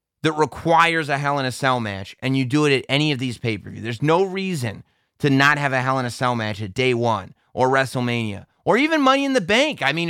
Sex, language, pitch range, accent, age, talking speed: male, English, 115-170 Hz, American, 30-49, 260 wpm